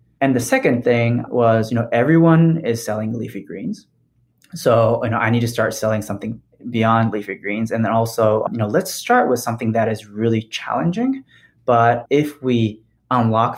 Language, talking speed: English, 180 wpm